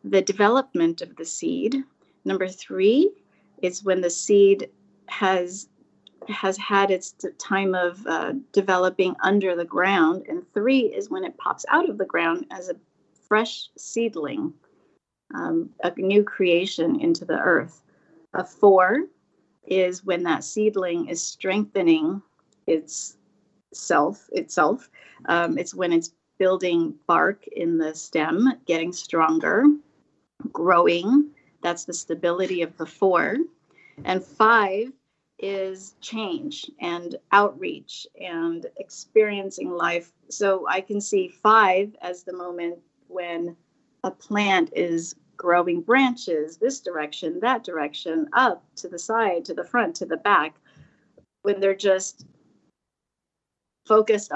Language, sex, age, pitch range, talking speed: English, female, 40-59, 175-250 Hz, 125 wpm